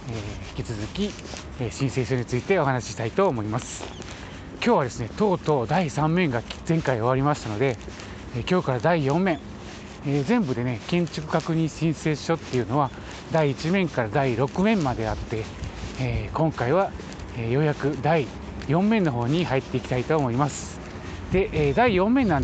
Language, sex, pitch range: Japanese, male, 115-180 Hz